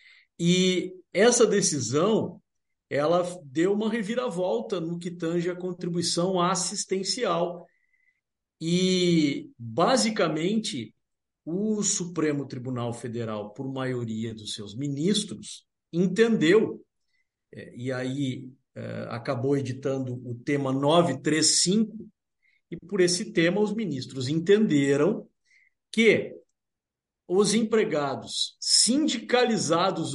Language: Portuguese